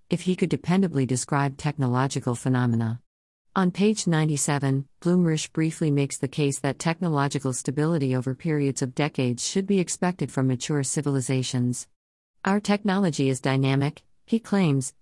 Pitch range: 130-155 Hz